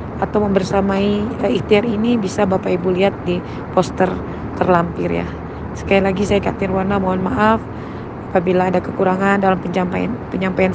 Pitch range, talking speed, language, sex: 195-225 Hz, 140 wpm, Indonesian, female